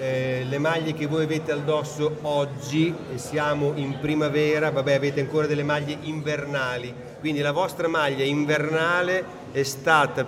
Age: 40-59